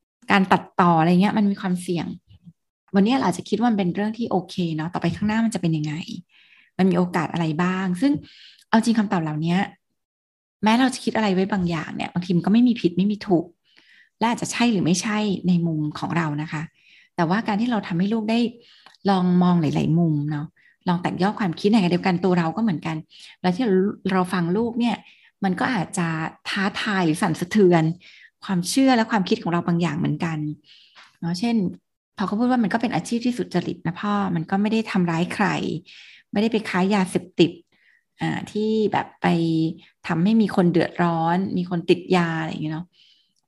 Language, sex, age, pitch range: Thai, female, 20-39, 170-215 Hz